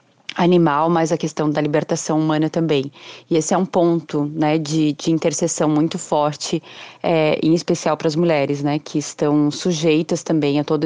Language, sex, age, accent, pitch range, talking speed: Portuguese, female, 20-39, Brazilian, 155-175 Hz, 175 wpm